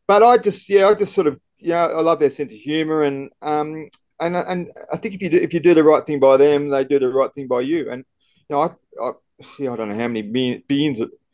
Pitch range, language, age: 115-160 Hz, English, 30-49